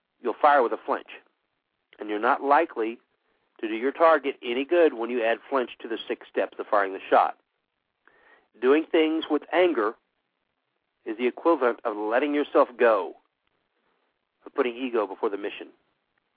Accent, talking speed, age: American, 160 wpm, 50-69